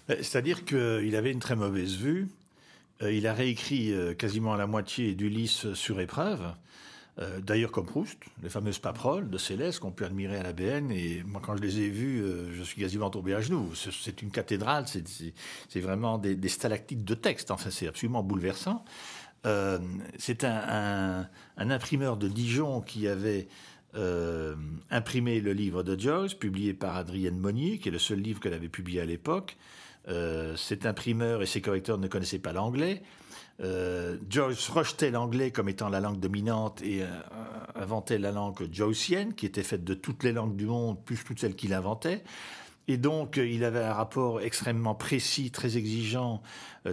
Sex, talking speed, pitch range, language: male, 175 wpm, 95-120 Hz, French